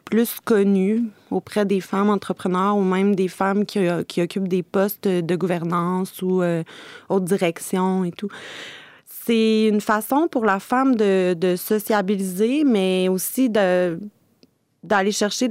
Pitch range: 180-215 Hz